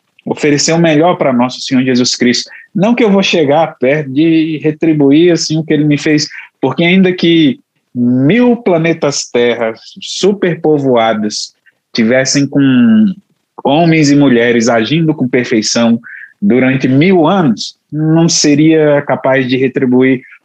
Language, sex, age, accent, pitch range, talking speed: Portuguese, male, 20-39, Brazilian, 120-165 Hz, 125 wpm